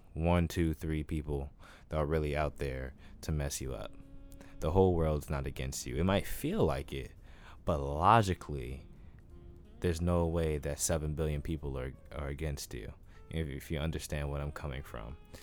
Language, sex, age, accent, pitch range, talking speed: English, male, 20-39, American, 75-90 Hz, 170 wpm